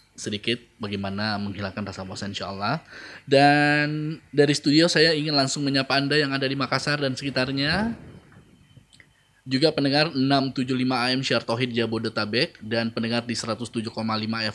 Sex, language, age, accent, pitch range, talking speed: male, Indonesian, 20-39, native, 110-130 Hz, 130 wpm